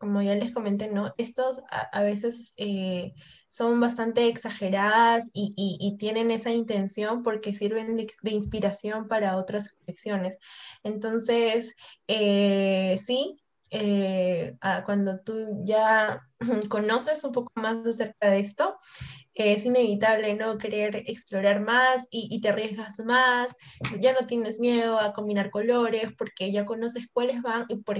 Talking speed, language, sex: 145 wpm, Spanish, female